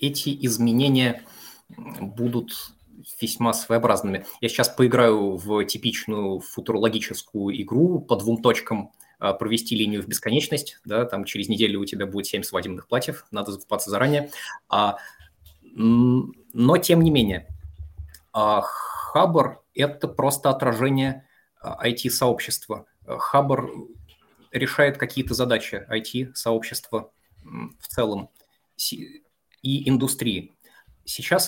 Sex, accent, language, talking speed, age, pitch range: male, native, Russian, 95 wpm, 20-39, 105-130 Hz